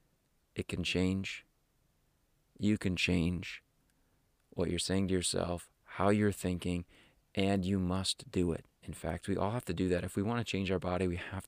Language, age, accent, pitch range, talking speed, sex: English, 30-49, American, 90-110 Hz, 190 wpm, male